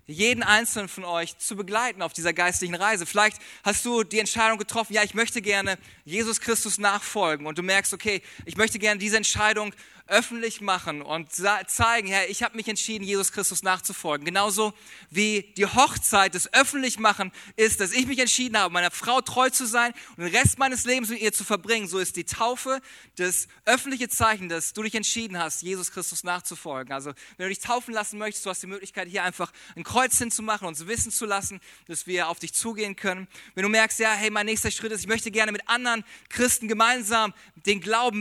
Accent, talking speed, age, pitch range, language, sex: German, 205 wpm, 20-39, 190-225 Hz, German, male